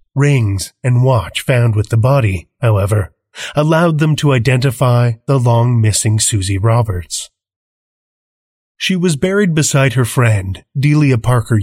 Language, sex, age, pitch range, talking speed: English, male, 30-49, 105-135 Hz, 125 wpm